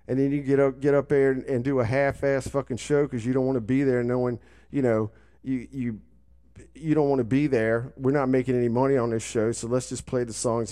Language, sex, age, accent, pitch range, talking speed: English, male, 40-59, American, 100-135 Hz, 250 wpm